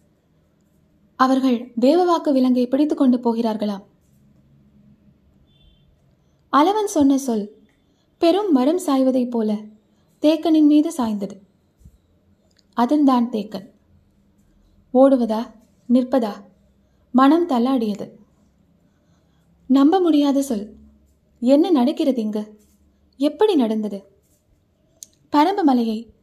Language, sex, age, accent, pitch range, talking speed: Tamil, female, 20-39, native, 205-280 Hz, 80 wpm